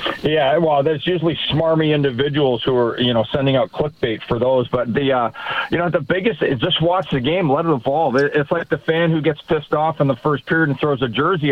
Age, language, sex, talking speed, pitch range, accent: 40-59, English, male, 240 wpm, 135-160 Hz, American